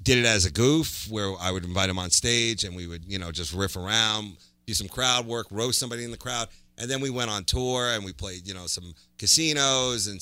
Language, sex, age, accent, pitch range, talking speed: English, male, 40-59, American, 90-115 Hz, 255 wpm